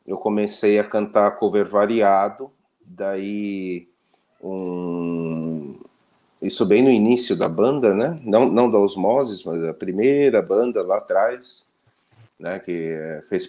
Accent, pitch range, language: Brazilian, 95-125 Hz, Portuguese